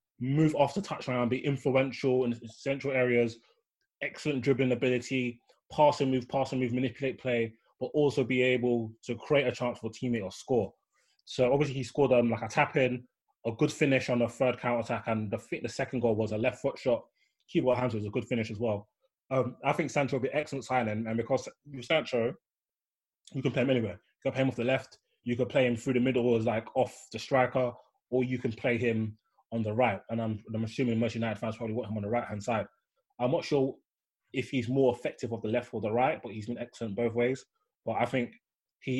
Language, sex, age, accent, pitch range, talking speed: English, male, 20-39, British, 115-130 Hz, 230 wpm